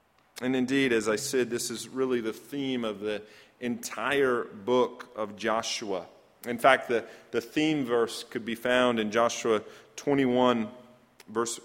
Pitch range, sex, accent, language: 110-135 Hz, male, American, English